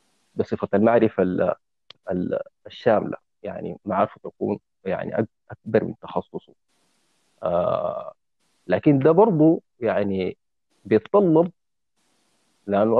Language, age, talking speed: Arabic, 40-59, 75 wpm